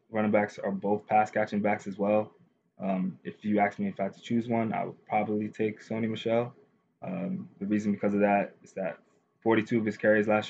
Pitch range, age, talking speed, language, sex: 100-110 Hz, 20-39, 215 wpm, English, male